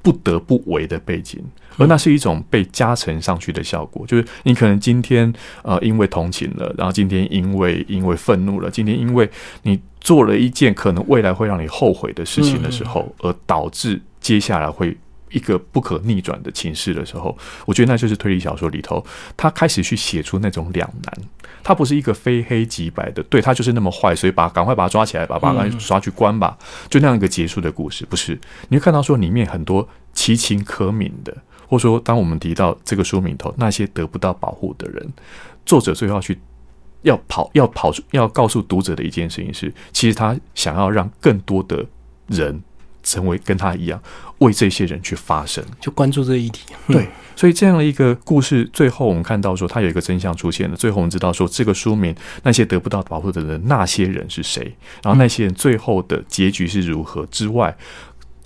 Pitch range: 90-115 Hz